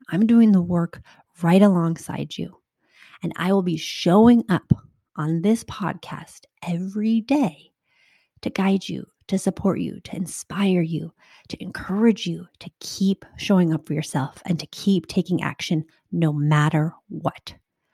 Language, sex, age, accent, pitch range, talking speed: English, female, 30-49, American, 170-205 Hz, 145 wpm